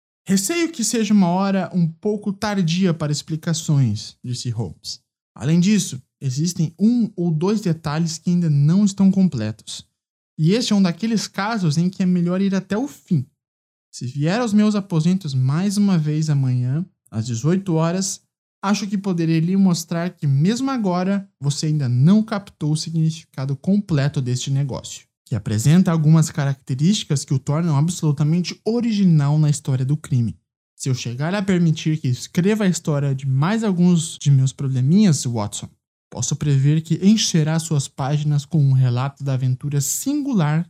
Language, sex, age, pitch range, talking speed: Portuguese, male, 20-39, 135-185 Hz, 160 wpm